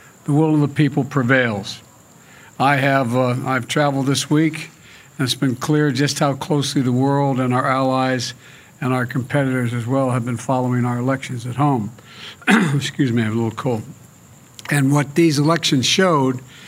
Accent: American